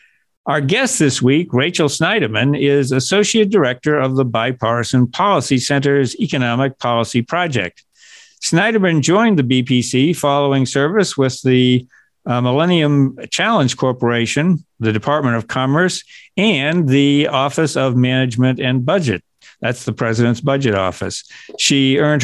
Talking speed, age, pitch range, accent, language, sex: 125 wpm, 60-79, 125-165 Hz, American, English, male